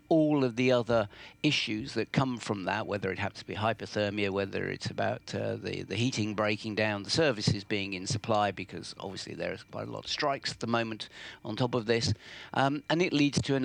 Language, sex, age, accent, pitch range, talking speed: English, male, 60-79, British, 105-130 Hz, 225 wpm